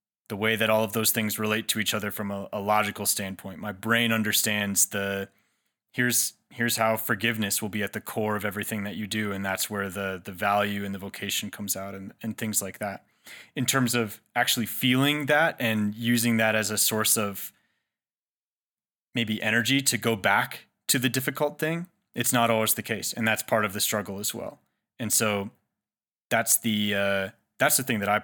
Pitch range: 100-115 Hz